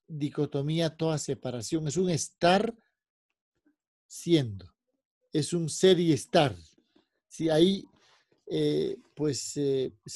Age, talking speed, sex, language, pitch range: 50-69, 105 wpm, male, Spanish, 145-180 Hz